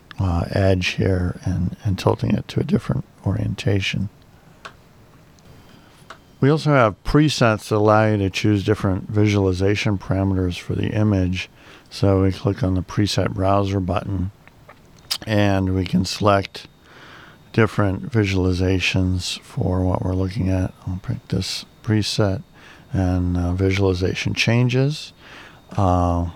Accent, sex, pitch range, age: American, male, 95-110 Hz, 50-69